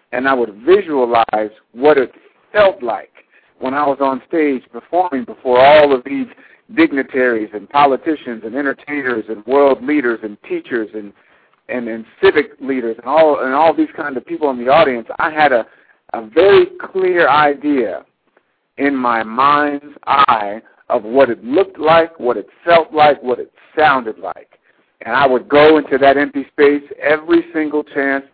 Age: 60-79